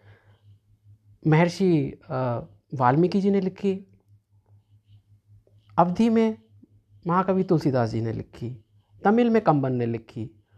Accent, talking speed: native, 100 wpm